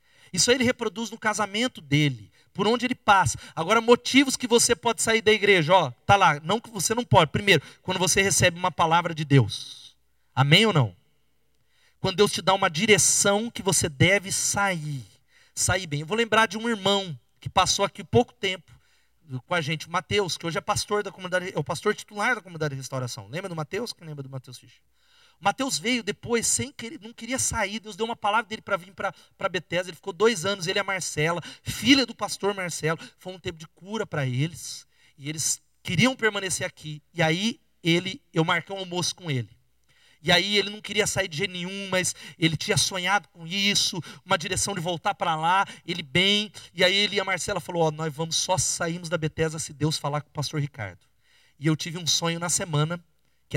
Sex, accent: male, Brazilian